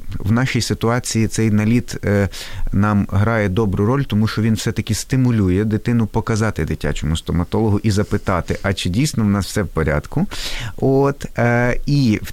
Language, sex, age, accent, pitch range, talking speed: Ukrainian, male, 30-49, native, 100-130 Hz, 150 wpm